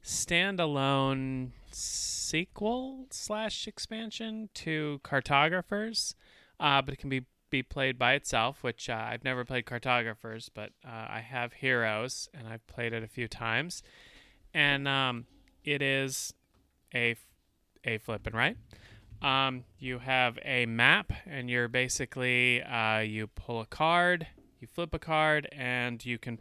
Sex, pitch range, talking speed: male, 110-135 Hz, 140 wpm